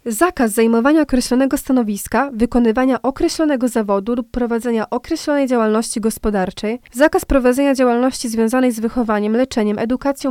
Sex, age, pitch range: female, 20-39, 230-275 Hz